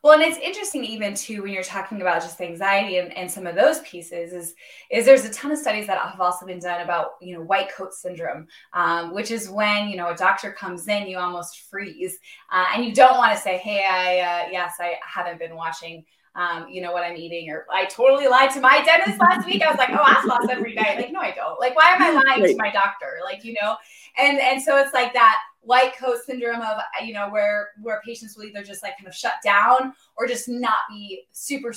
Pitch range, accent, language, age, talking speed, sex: 185-250 Hz, American, English, 20-39, 245 wpm, female